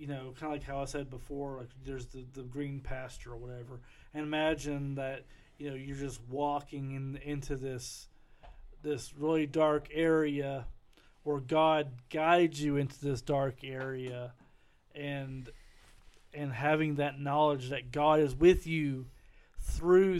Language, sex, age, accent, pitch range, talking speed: English, male, 40-59, American, 130-150 Hz, 150 wpm